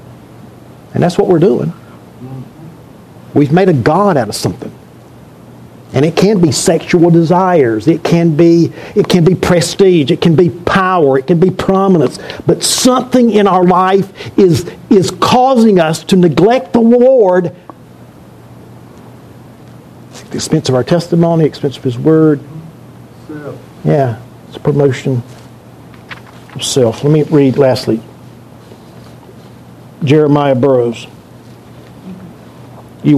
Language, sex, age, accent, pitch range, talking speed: English, male, 60-79, American, 135-175 Hz, 125 wpm